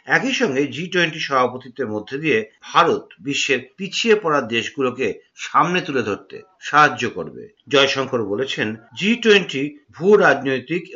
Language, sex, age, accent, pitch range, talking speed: Bengali, male, 50-69, native, 145-195 Hz, 110 wpm